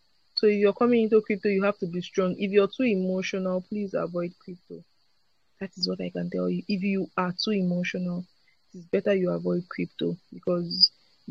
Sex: female